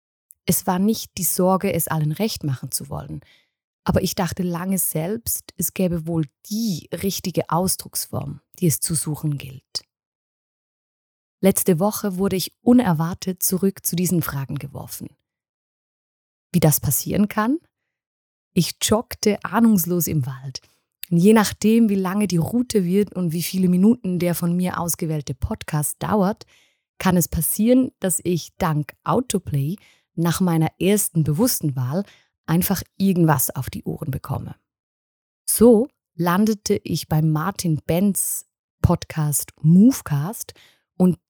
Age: 20-39